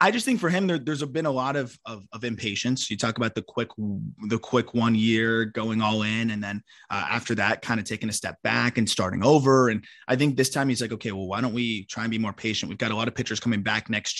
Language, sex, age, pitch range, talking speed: English, male, 20-39, 115-145 Hz, 280 wpm